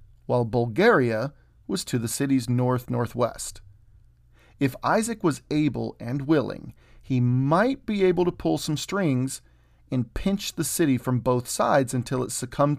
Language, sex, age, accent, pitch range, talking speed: English, male, 40-59, American, 115-150 Hz, 145 wpm